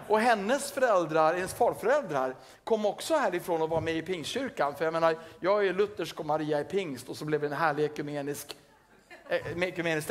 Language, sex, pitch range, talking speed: Swedish, male, 150-195 Hz, 190 wpm